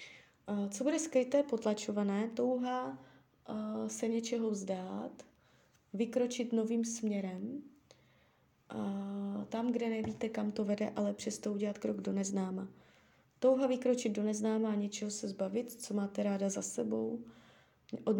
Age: 20-39